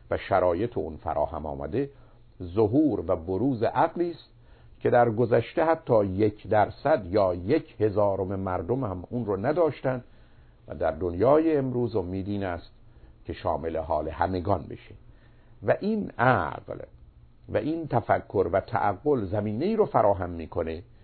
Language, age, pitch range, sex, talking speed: Persian, 50-69, 95-130 Hz, male, 135 wpm